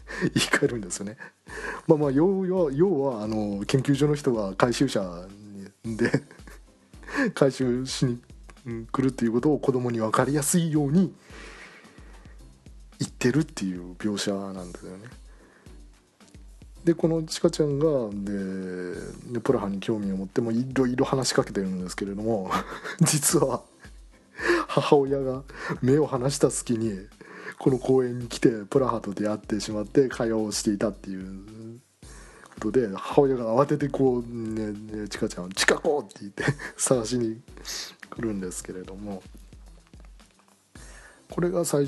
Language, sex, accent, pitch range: Japanese, male, native, 105-140 Hz